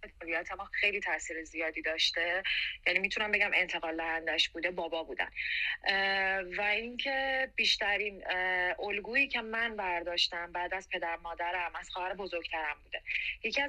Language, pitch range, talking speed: Persian, 170-210 Hz, 125 wpm